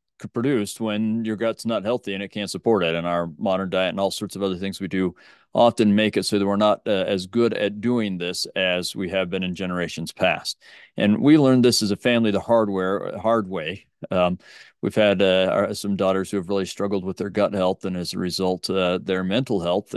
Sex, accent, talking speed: male, American, 230 wpm